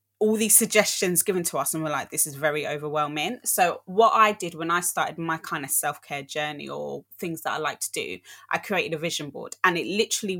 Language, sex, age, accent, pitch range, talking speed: English, female, 20-39, British, 155-185 Hz, 230 wpm